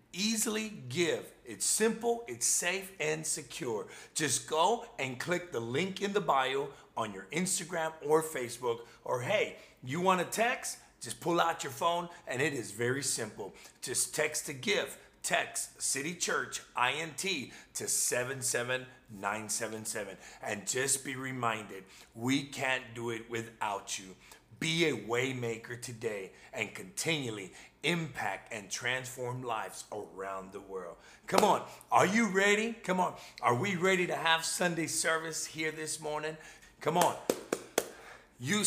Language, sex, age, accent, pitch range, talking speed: English, male, 40-59, American, 130-195 Hz, 145 wpm